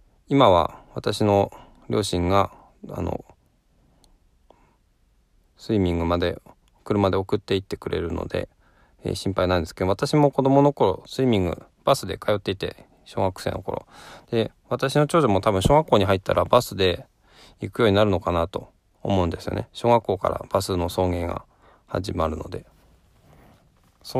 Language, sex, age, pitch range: Japanese, male, 20-39, 90-120 Hz